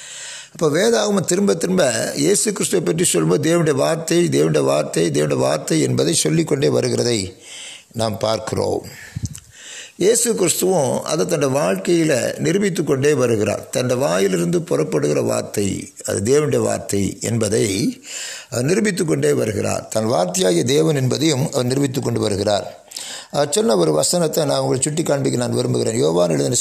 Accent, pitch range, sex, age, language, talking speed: native, 115-165 Hz, male, 60-79, Tamil, 110 wpm